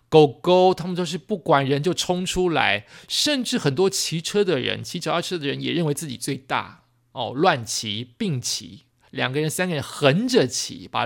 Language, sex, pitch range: Chinese, male, 125-175 Hz